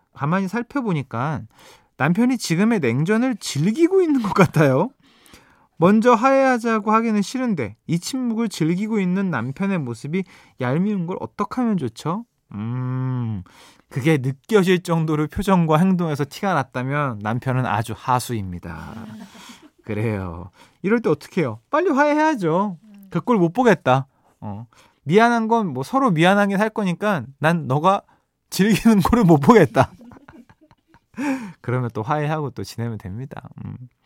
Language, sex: Korean, male